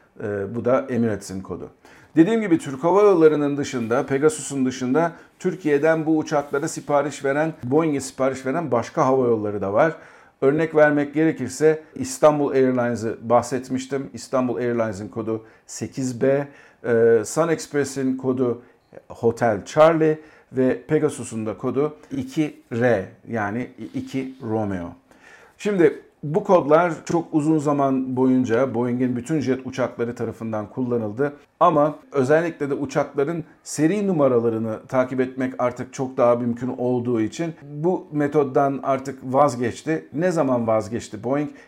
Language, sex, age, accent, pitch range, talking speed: Turkish, male, 50-69, native, 120-150 Hz, 120 wpm